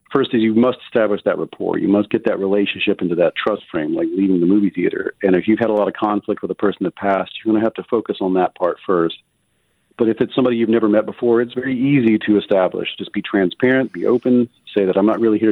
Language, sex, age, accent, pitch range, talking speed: English, male, 40-59, American, 95-120 Hz, 265 wpm